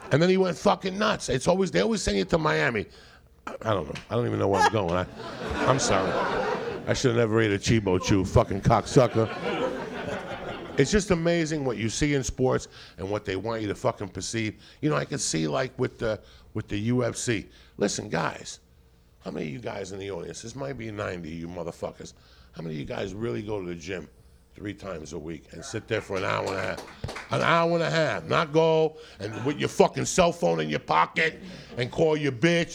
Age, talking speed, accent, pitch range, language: 50-69, 225 wpm, American, 95-155 Hz, English